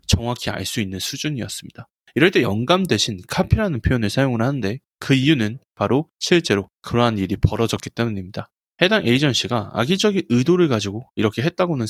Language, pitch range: Korean, 105-145 Hz